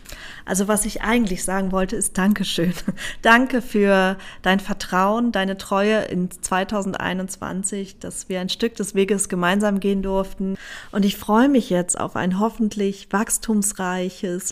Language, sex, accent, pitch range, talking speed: German, female, German, 180-205 Hz, 140 wpm